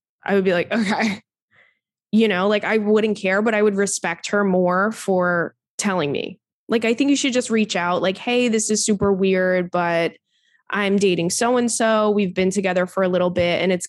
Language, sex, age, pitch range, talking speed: English, female, 20-39, 180-220 Hz, 205 wpm